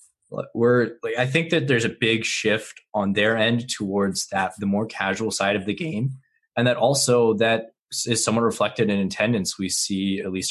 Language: English